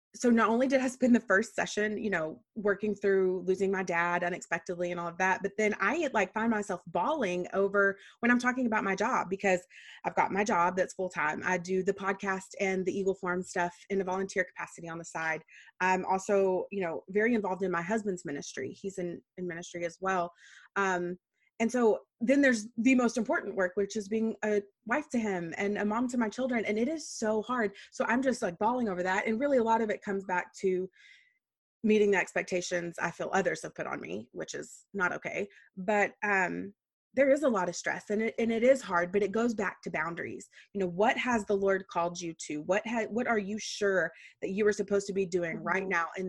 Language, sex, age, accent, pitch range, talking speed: English, female, 20-39, American, 180-215 Hz, 230 wpm